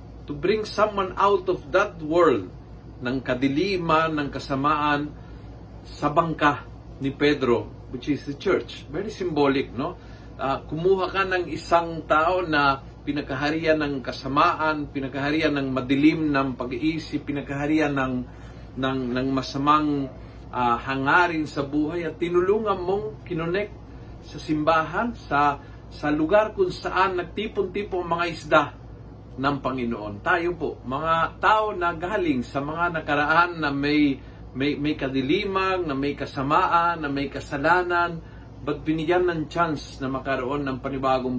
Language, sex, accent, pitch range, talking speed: Filipino, male, native, 130-170 Hz, 130 wpm